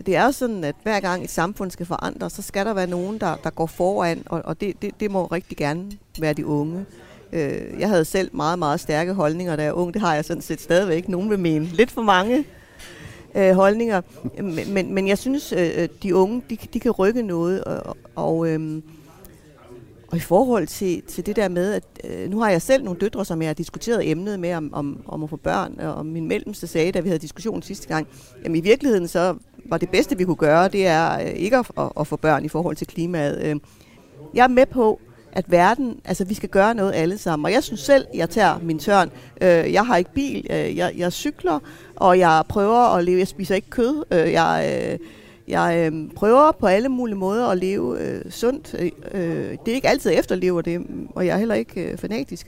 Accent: native